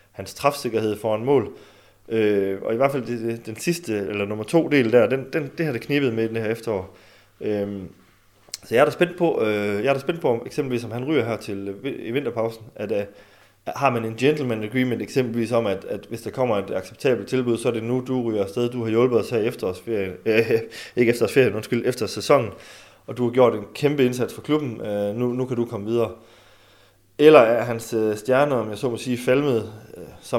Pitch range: 105-125 Hz